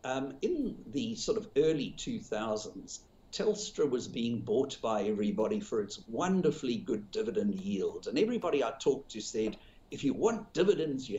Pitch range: 130-220 Hz